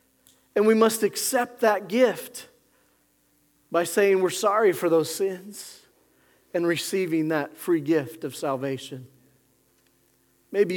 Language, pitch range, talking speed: English, 150-210 Hz, 115 wpm